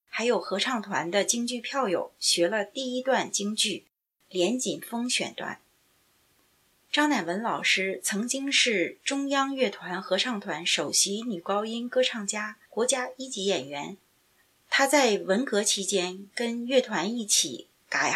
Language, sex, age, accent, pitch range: Chinese, female, 30-49, native, 190-255 Hz